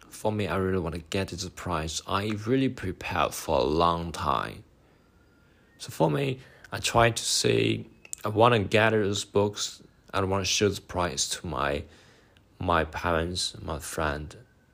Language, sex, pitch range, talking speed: English, male, 80-105 Hz, 165 wpm